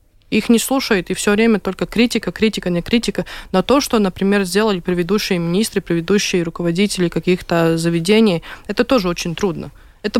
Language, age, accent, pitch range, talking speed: Russian, 20-39, native, 180-215 Hz, 160 wpm